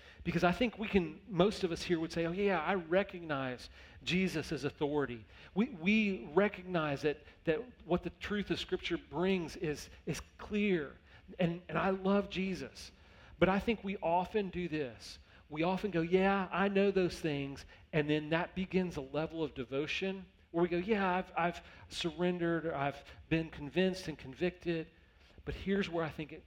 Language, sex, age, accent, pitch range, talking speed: English, male, 40-59, American, 110-180 Hz, 175 wpm